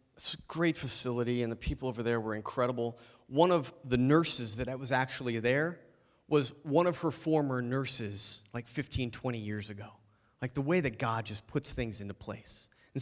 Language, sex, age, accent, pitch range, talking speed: English, male, 30-49, American, 120-155 Hz, 190 wpm